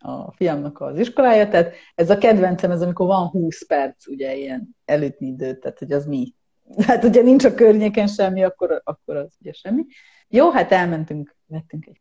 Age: 30-49